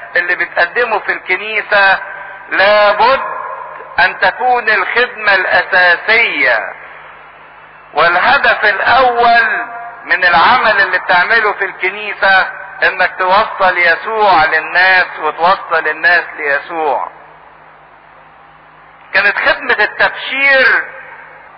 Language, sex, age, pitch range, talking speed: English, male, 50-69, 195-265 Hz, 75 wpm